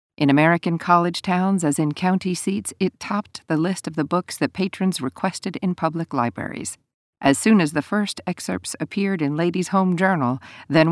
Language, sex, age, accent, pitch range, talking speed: English, female, 50-69, American, 150-190 Hz, 180 wpm